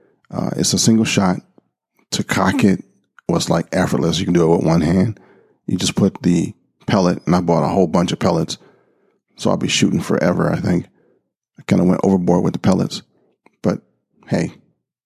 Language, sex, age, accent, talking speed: English, male, 40-59, American, 190 wpm